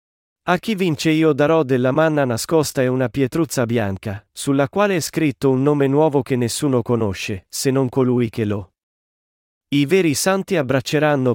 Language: Italian